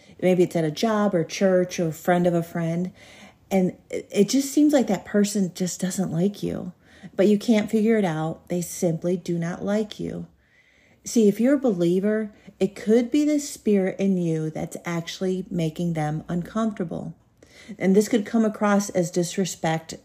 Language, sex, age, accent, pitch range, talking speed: English, female, 40-59, American, 165-205 Hz, 175 wpm